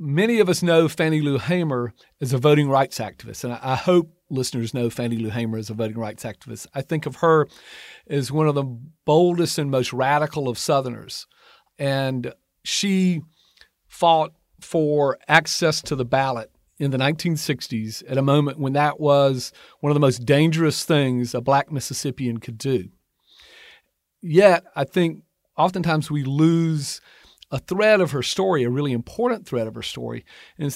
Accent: American